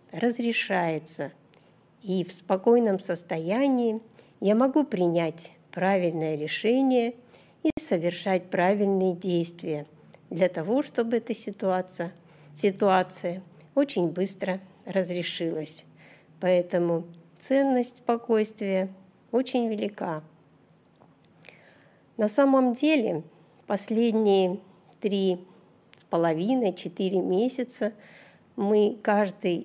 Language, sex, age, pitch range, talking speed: Russian, female, 50-69, 170-225 Hz, 75 wpm